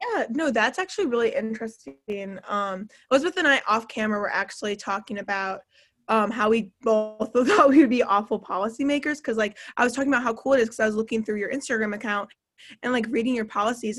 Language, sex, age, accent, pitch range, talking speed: English, female, 20-39, American, 210-245 Hz, 205 wpm